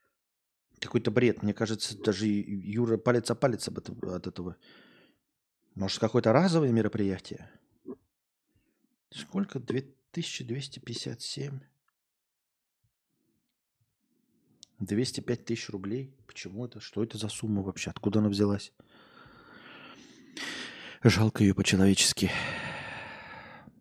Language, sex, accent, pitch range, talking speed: Russian, male, native, 100-130 Hz, 85 wpm